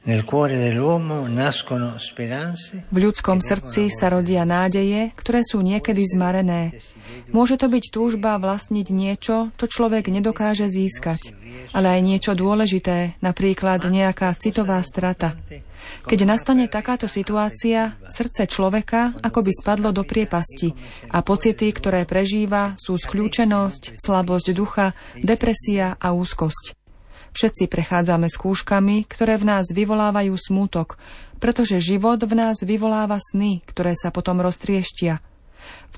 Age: 30-49